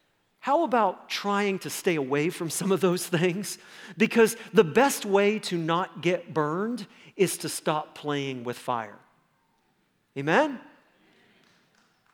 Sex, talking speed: male, 130 wpm